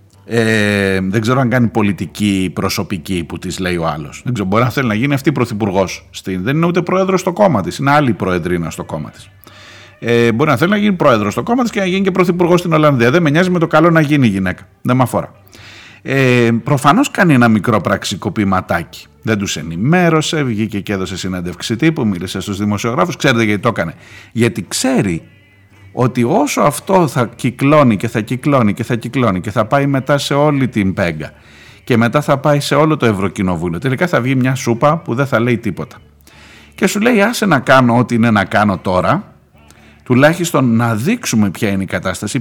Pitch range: 100-145 Hz